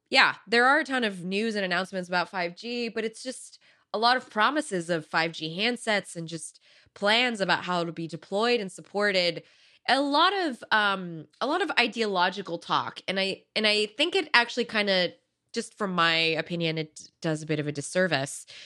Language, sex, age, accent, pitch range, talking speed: English, female, 20-39, American, 165-215 Hz, 195 wpm